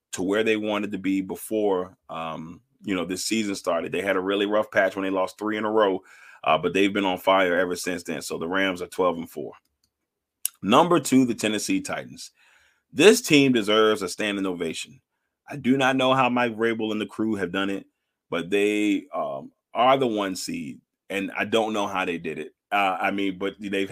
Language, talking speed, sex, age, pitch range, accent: English, 215 wpm, male, 30-49, 95-115 Hz, American